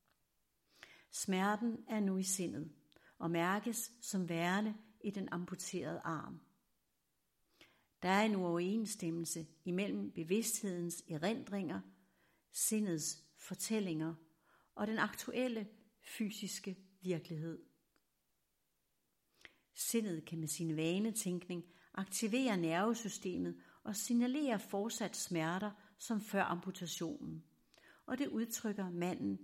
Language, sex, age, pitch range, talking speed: Danish, female, 60-79, 165-215 Hz, 95 wpm